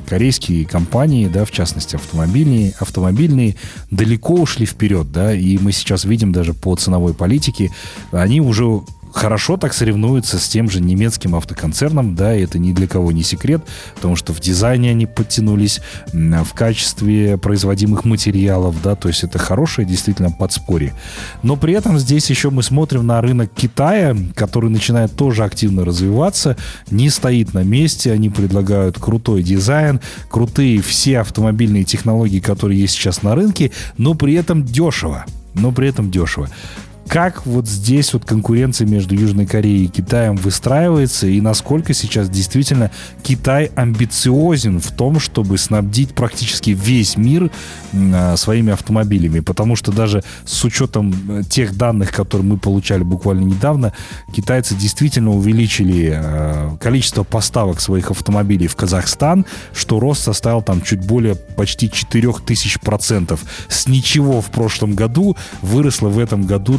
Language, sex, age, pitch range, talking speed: Russian, male, 30-49, 95-120 Hz, 145 wpm